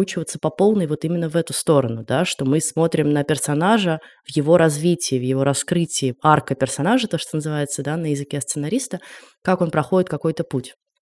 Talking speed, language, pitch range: 180 wpm, Russian, 145-180 Hz